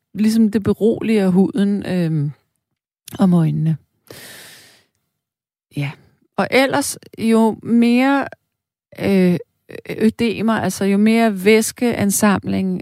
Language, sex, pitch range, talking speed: Danish, female, 155-220 Hz, 85 wpm